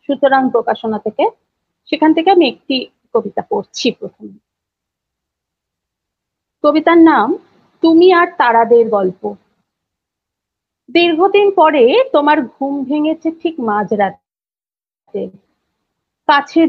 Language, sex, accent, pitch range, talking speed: Bengali, female, native, 240-315 Hz, 85 wpm